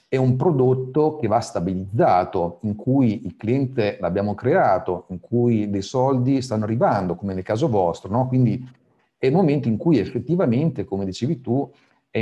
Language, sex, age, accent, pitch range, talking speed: Italian, male, 50-69, native, 105-130 Hz, 165 wpm